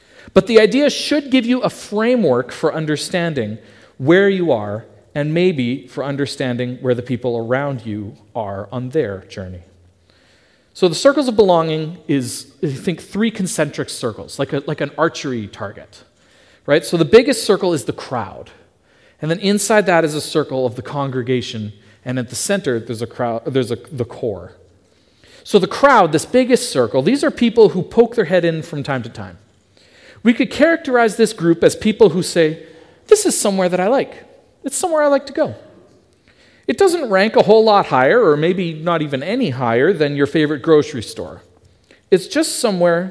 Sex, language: male, English